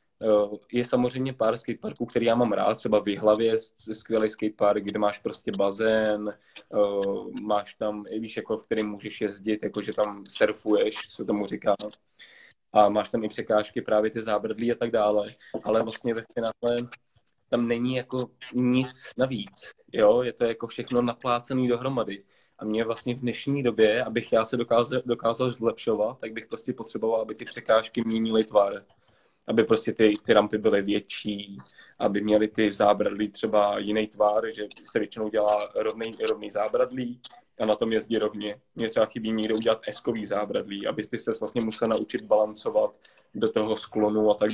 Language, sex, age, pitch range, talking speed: Czech, male, 20-39, 105-120 Hz, 170 wpm